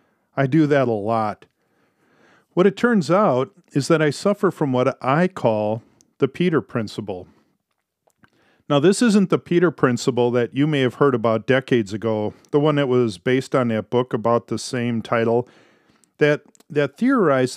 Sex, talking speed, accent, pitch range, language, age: male, 165 wpm, American, 120-160 Hz, English, 40-59